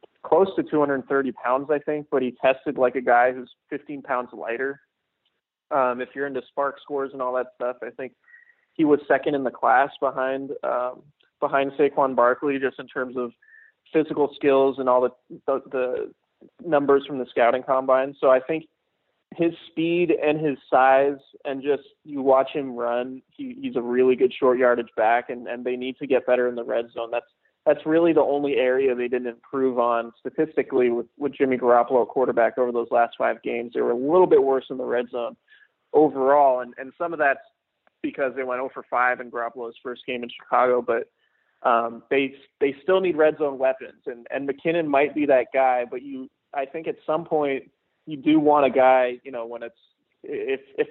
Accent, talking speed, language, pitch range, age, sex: American, 200 wpm, English, 125-150 Hz, 20-39, male